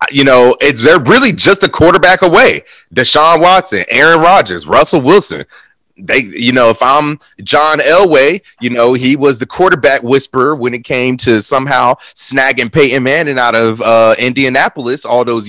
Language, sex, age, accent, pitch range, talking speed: English, male, 30-49, American, 125-185 Hz, 165 wpm